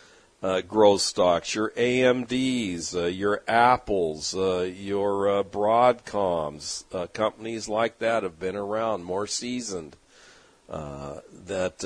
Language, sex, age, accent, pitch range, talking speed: English, male, 50-69, American, 95-130 Hz, 115 wpm